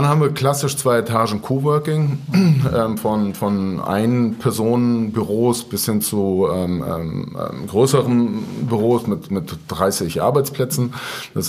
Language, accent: German, German